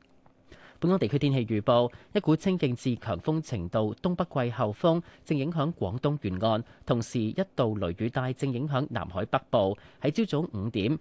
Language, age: Chinese, 30-49